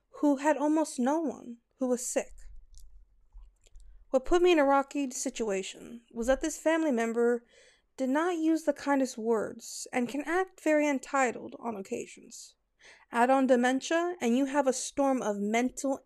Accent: American